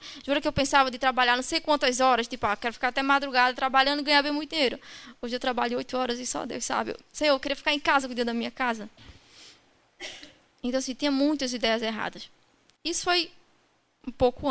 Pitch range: 235-285 Hz